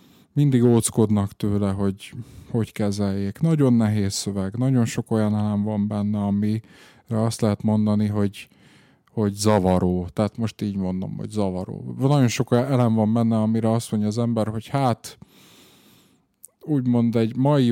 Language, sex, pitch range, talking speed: Hungarian, male, 105-125 Hz, 145 wpm